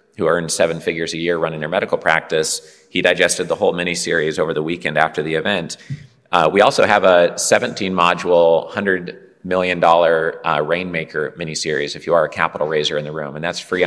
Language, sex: English, male